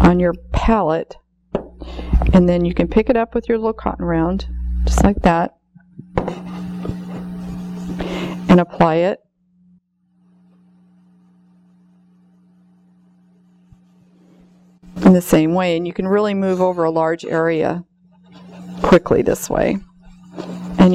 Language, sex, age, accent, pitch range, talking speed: English, female, 40-59, American, 175-195 Hz, 110 wpm